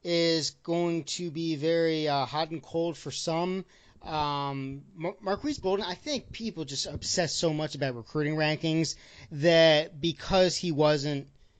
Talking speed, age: 145 wpm, 30-49